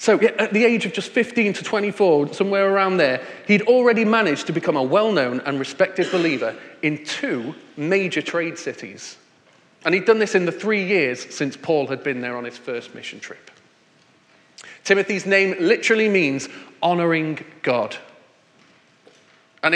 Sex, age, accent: male, 30-49, British